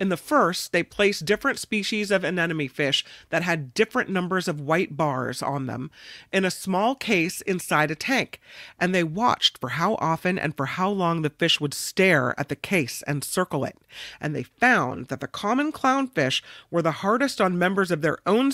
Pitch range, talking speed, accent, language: 155-215 Hz, 195 wpm, American, English